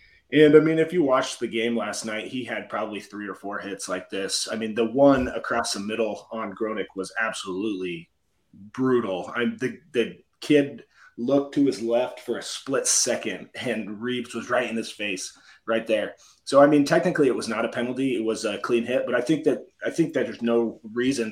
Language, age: English, 30-49